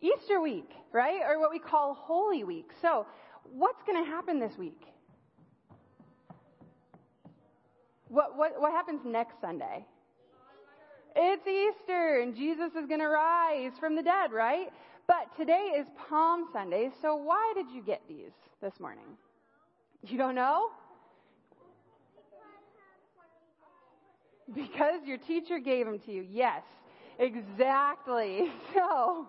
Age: 20-39